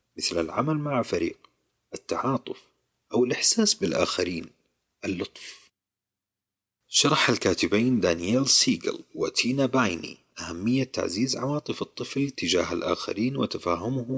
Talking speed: 95 wpm